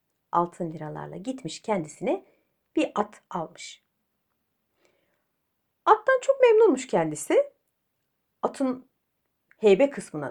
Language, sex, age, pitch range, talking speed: Turkish, female, 60-79, 170-280 Hz, 80 wpm